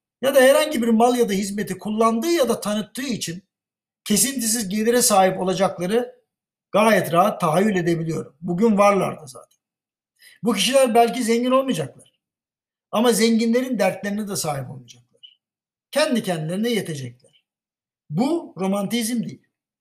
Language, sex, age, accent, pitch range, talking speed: Turkish, male, 60-79, native, 185-240 Hz, 125 wpm